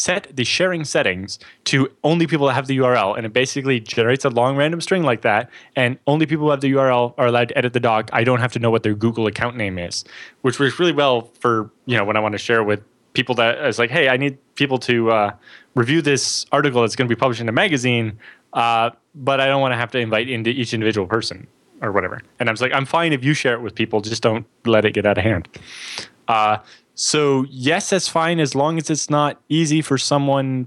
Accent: American